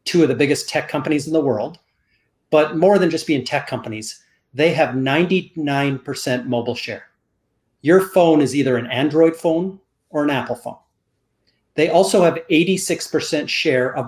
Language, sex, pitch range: English, male, 125-165 Hz